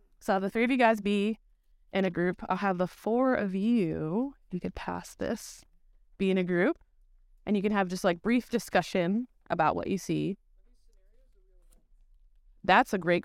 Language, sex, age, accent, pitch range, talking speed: English, female, 20-39, American, 185-250 Hz, 175 wpm